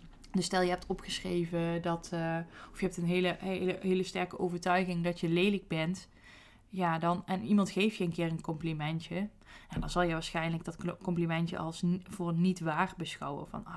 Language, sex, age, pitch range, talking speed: Dutch, female, 20-39, 170-195 Hz, 190 wpm